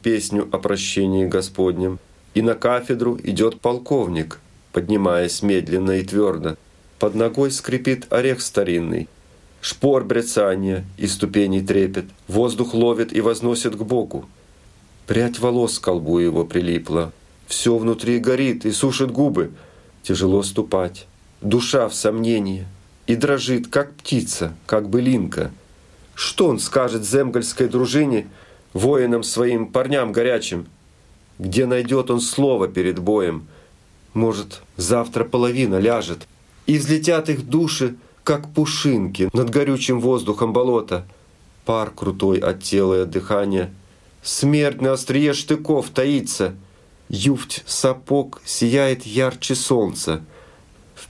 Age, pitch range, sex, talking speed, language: 40-59, 95-125 Hz, male, 115 wpm, Russian